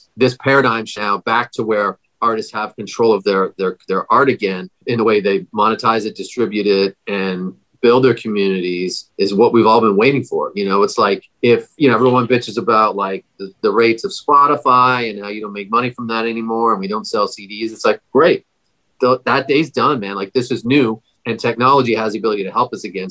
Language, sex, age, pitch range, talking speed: English, male, 40-59, 110-130 Hz, 220 wpm